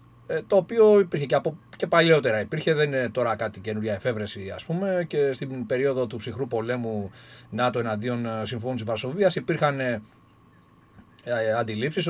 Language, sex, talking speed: Greek, male, 140 wpm